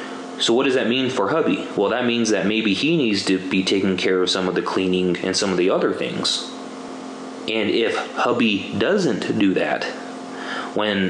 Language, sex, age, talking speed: English, male, 20-39, 195 wpm